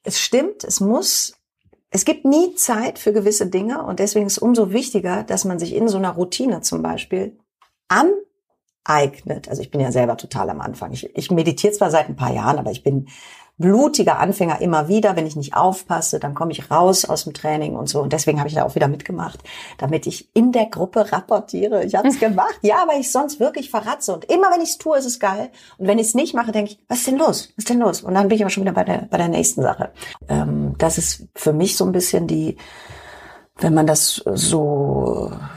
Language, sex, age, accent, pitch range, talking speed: German, female, 40-59, German, 150-215 Hz, 235 wpm